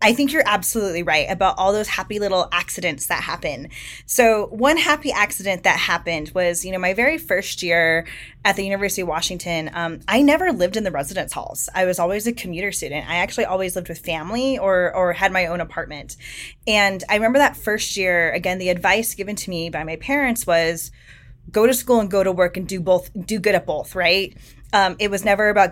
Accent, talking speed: American, 215 wpm